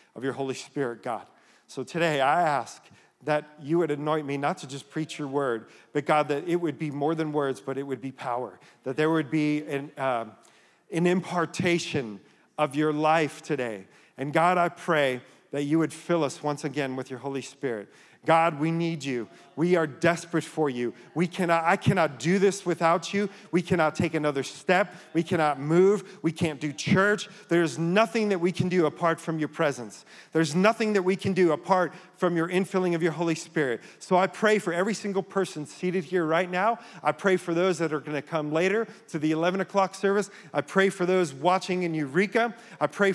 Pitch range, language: 150-185 Hz, English